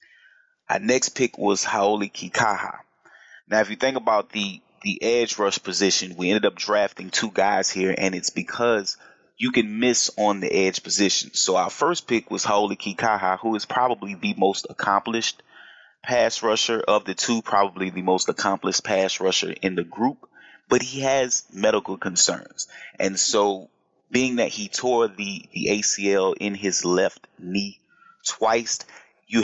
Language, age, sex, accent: English, 30-49, male, American